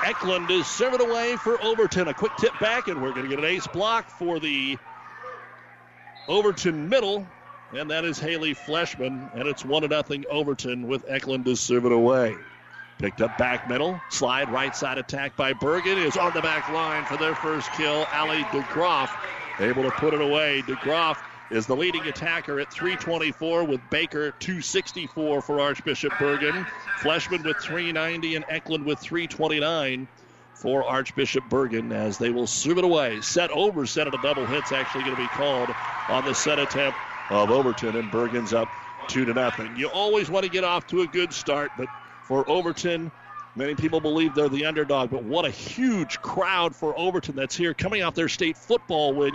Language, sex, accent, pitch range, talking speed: English, male, American, 135-170 Hz, 180 wpm